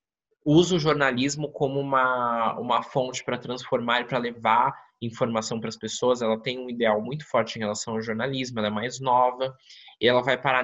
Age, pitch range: 20-39, 110-140 Hz